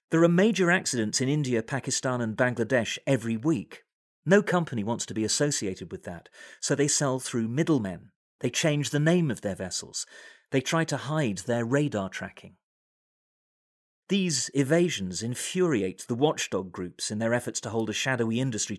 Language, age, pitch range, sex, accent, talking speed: English, 40-59, 115-155 Hz, male, British, 165 wpm